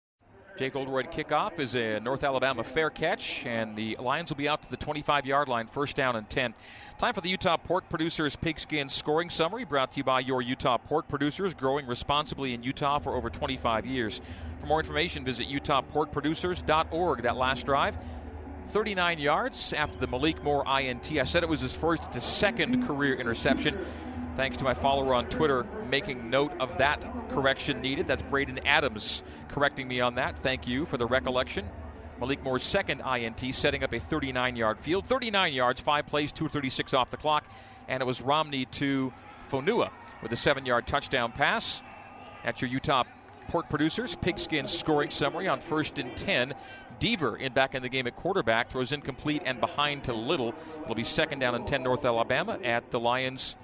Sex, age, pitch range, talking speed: male, 40-59, 125-150 Hz, 185 wpm